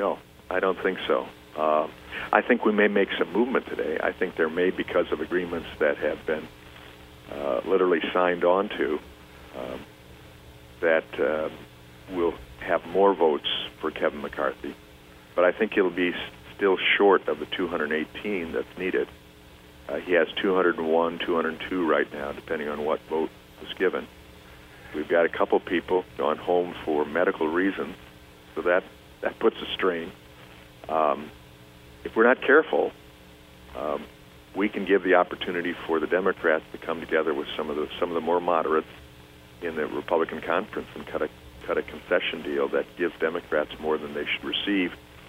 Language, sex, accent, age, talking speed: English, male, American, 50-69, 165 wpm